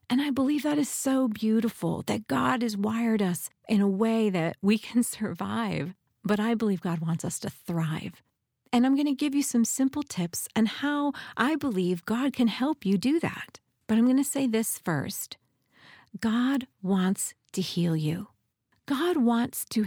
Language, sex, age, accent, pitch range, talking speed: English, female, 40-59, American, 180-245 Hz, 185 wpm